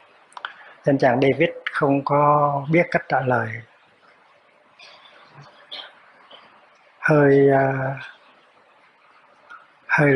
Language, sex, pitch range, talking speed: Vietnamese, male, 135-170 Hz, 70 wpm